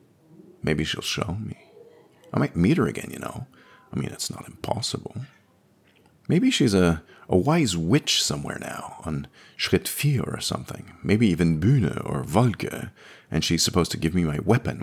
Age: 40-59